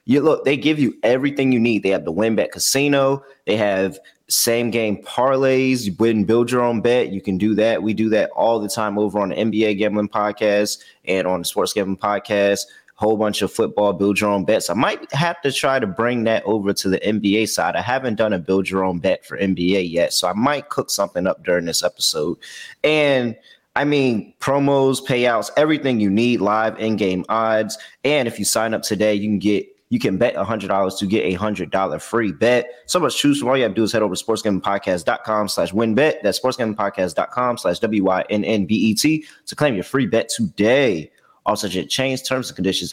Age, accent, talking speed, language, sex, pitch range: 20-39, American, 205 wpm, English, male, 95-120 Hz